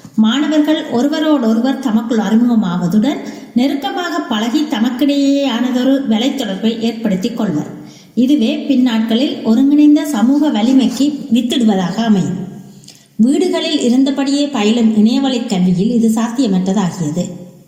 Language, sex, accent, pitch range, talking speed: Tamil, female, native, 220-280 Hz, 85 wpm